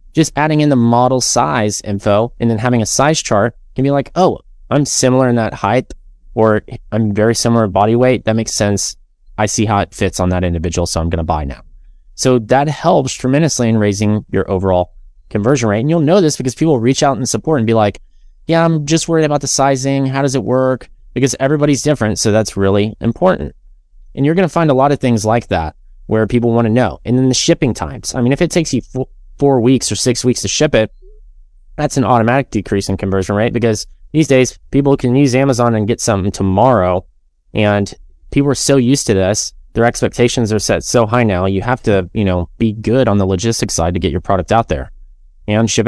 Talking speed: 225 wpm